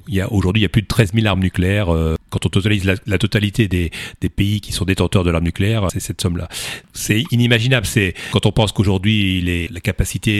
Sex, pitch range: male, 90-115 Hz